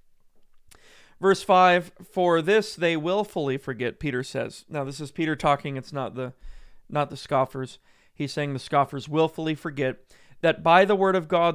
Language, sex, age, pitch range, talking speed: English, male, 30-49, 135-165 Hz, 165 wpm